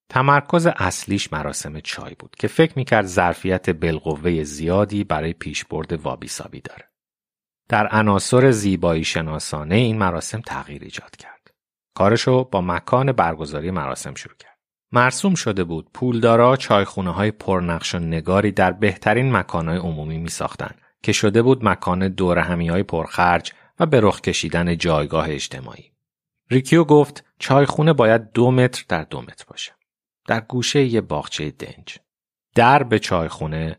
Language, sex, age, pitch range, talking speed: Persian, male, 30-49, 85-115 Hz, 140 wpm